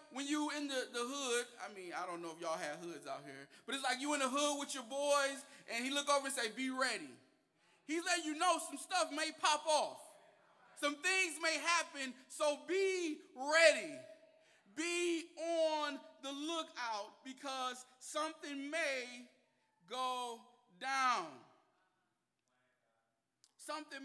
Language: English